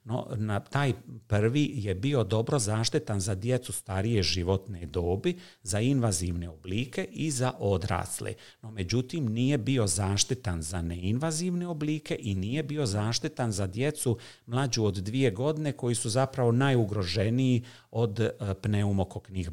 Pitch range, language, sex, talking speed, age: 100-135 Hz, Croatian, male, 130 wpm, 50-69